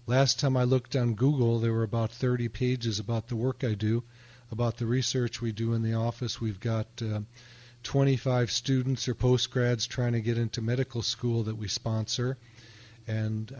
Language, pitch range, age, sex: English, 110-125 Hz, 40-59, male